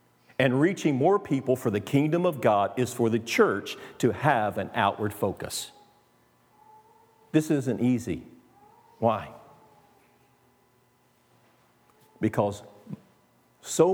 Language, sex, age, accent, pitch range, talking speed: English, male, 50-69, American, 120-170 Hz, 105 wpm